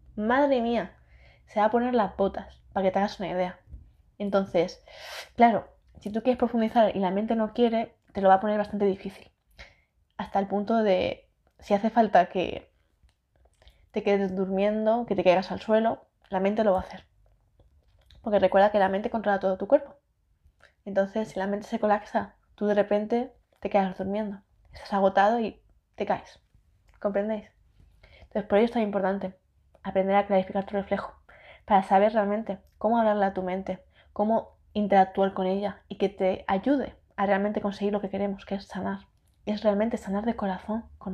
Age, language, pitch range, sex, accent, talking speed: 20-39, Spanish, 190-215 Hz, female, Spanish, 180 wpm